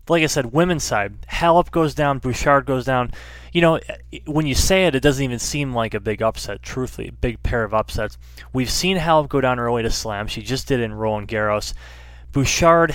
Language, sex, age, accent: English, male, 20-39, American